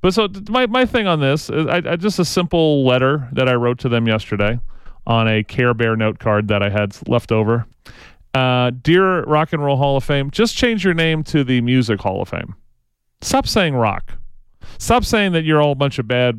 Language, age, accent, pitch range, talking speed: English, 40-59, American, 115-170 Hz, 225 wpm